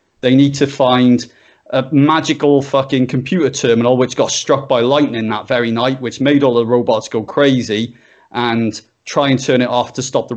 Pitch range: 120-150 Hz